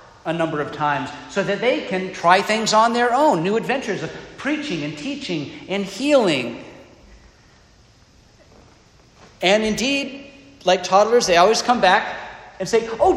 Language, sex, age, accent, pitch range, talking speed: English, male, 50-69, American, 140-215 Hz, 145 wpm